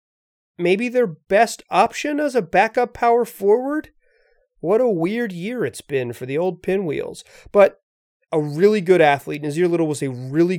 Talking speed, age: 165 wpm, 30-49